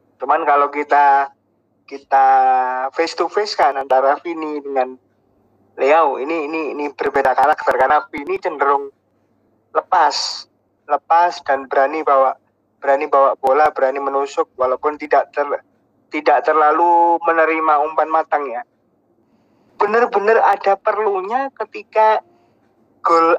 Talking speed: 115 wpm